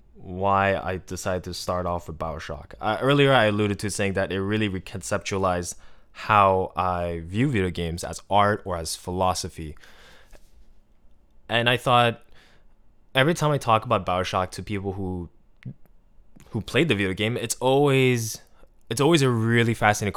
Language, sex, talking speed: English, male, 155 wpm